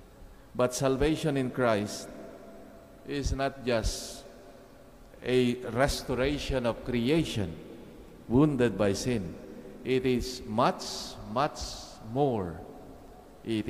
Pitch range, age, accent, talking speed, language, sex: 95-120 Hz, 50-69, Filipino, 90 wpm, English, male